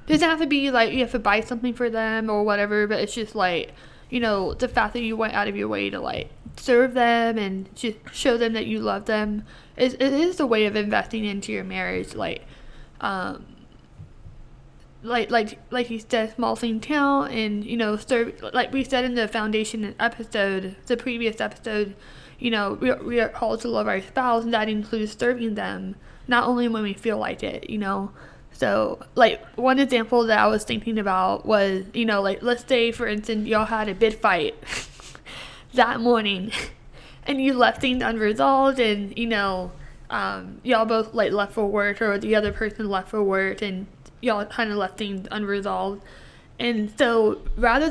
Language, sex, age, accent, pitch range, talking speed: English, female, 10-29, American, 210-245 Hz, 195 wpm